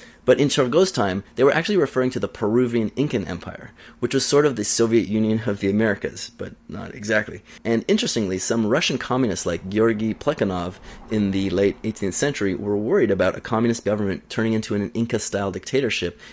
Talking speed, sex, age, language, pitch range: 185 wpm, male, 30-49, English, 95-120 Hz